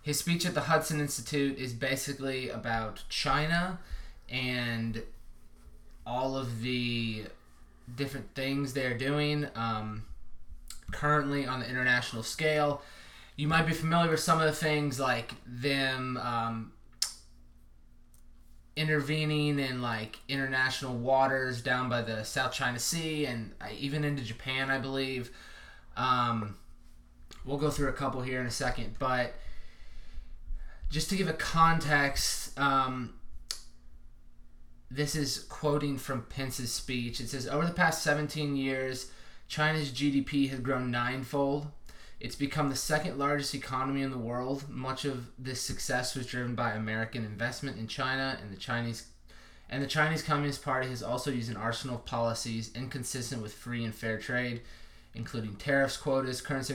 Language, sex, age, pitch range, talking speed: English, male, 20-39, 115-140 Hz, 140 wpm